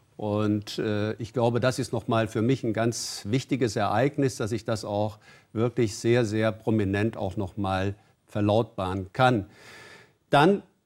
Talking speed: 145 wpm